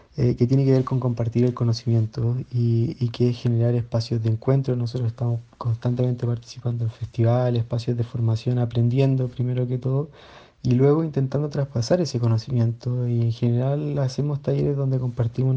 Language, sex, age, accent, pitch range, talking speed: Spanish, male, 20-39, Argentinian, 120-135 Hz, 165 wpm